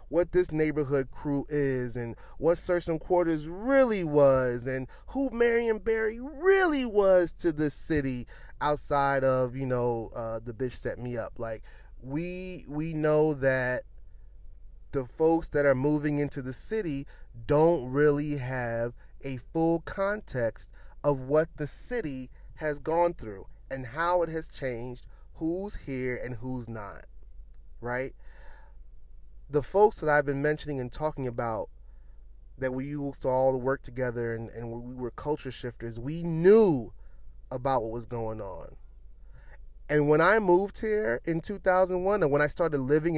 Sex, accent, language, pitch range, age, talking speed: male, American, English, 120-160 Hz, 20-39, 150 wpm